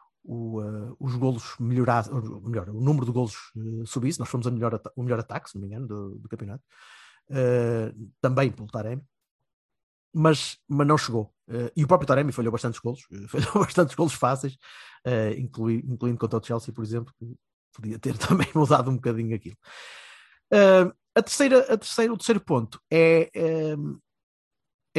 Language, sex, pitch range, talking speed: Portuguese, male, 120-145 Hz, 175 wpm